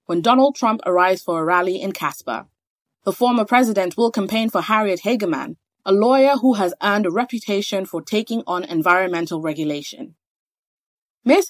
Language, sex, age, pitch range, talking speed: English, female, 20-39, 175-240 Hz, 155 wpm